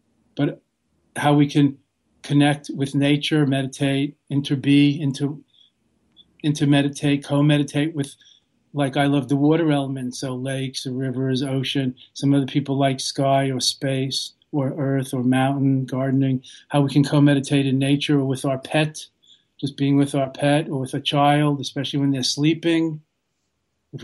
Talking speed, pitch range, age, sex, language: 145 wpm, 130-145 Hz, 40-59, male, English